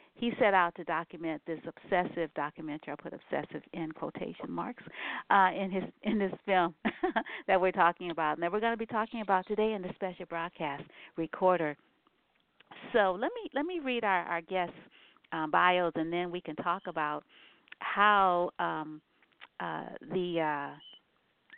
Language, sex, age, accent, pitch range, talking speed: English, female, 50-69, American, 160-195 Hz, 165 wpm